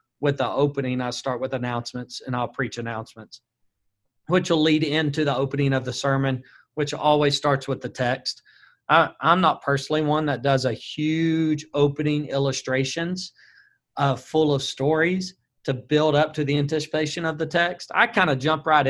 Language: English